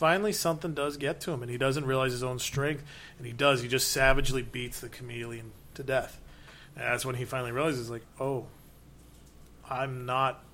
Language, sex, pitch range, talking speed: English, male, 125-145 Hz, 195 wpm